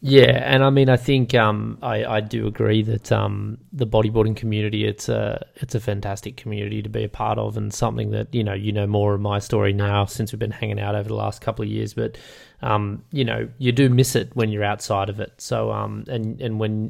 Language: English